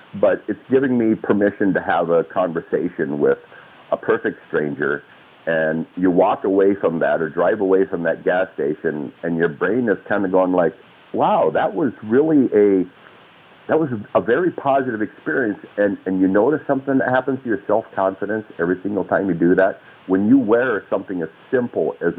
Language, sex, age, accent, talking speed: English, male, 50-69, American, 180 wpm